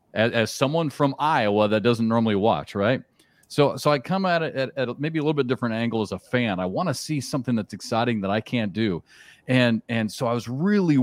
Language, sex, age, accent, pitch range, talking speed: English, male, 40-59, American, 110-145 Hz, 235 wpm